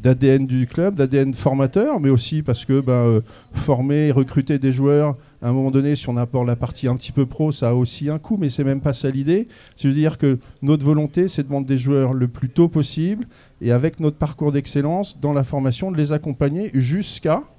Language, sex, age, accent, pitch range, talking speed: French, male, 40-59, French, 125-145 Hz, 220 wpm